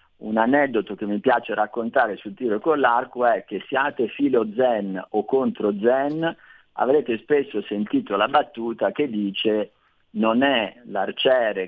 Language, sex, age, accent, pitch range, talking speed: Italian, male, 40-59, native, 100-125 Hz, 145 wpm